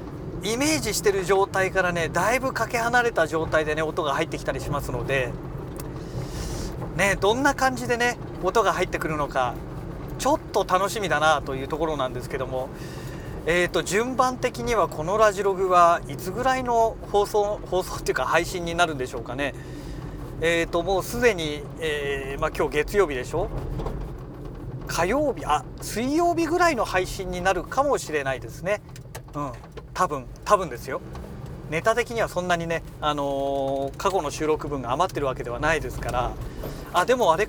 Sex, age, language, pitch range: male, 40-59, Japanese, 140-195 Hz